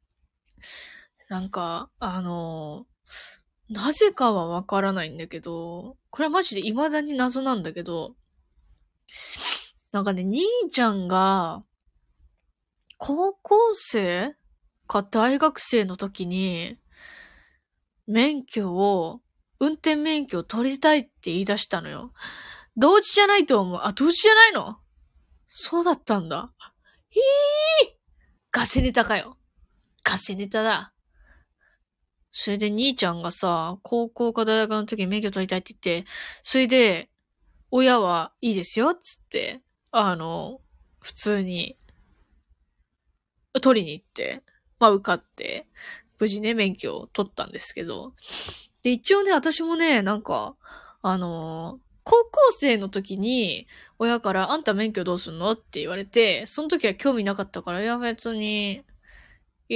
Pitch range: 185-270 Hz